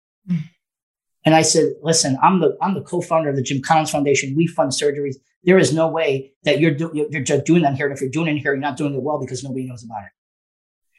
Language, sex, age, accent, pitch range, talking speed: English, male, 40-59, American, 135-170 Hz, 245 wpm